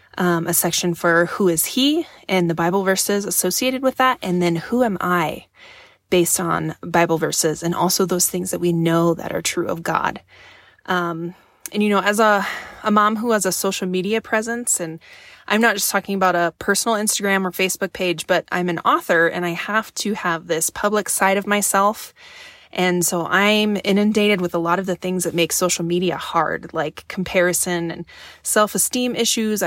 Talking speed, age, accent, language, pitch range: 190 wpm, 20-39, American, English, 175-210 Hz